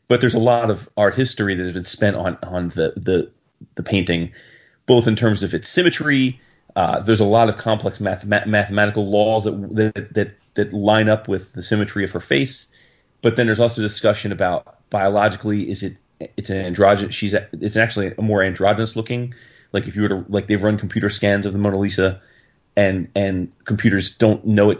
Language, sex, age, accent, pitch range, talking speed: English, male, 30-49, American, 100-115 Hz, 205 wpm